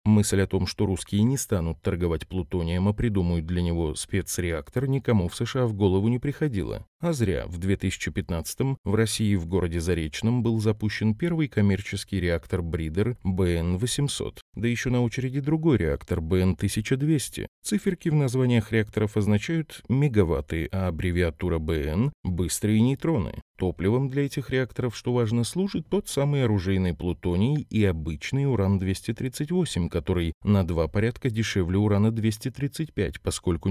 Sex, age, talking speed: male, 30-49, 135 wpm